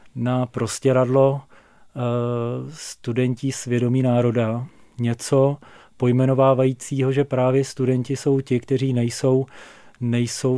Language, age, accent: Czech, 40-59, native